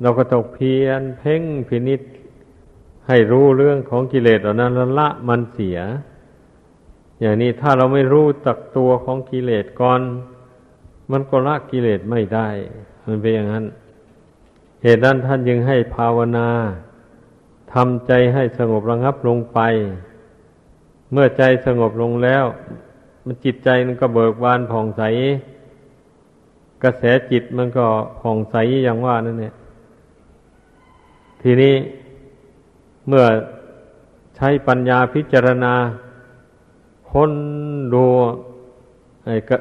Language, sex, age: Thai, male, 50-69